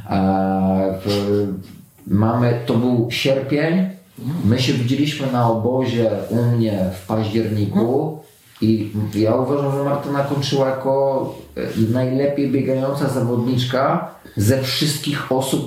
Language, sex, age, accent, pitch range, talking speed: Polish, male, 30-49, native, 105-130 Hz, 95 wpm